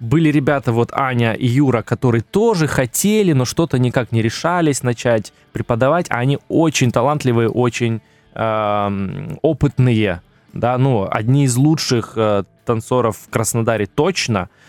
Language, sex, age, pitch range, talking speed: Russian, male, 20-39, 110-145 Hz, 130 wpm